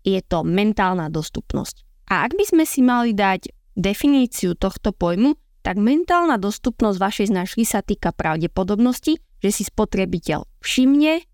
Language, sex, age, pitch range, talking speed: Slovak, female, 20-39, 190-270 Hz, 140 wpm